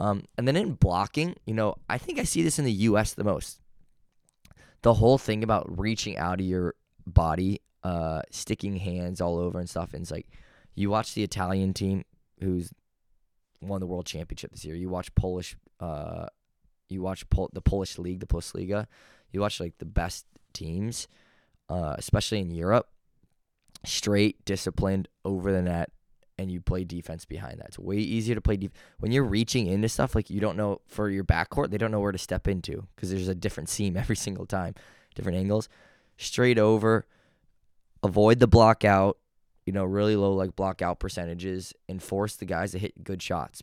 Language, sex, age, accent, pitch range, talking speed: English, male, 20-39, American, 90-105 Hz, 190 wpm